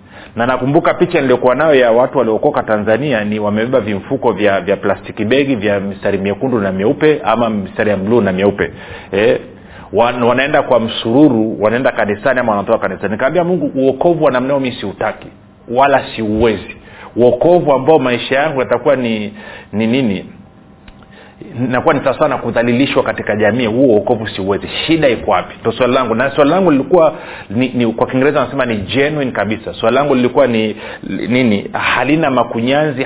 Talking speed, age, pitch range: 170 wpm, 40-59, 105-135 Hz